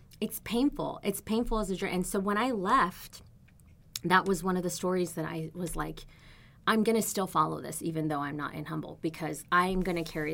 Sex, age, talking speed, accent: female, 20-39, 225 wpm, American